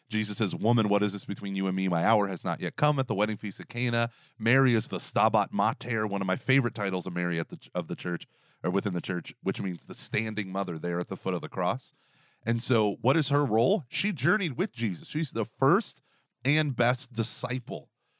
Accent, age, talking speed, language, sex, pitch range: American, 30-49, 230 wpm, English, male, 100-130 Hz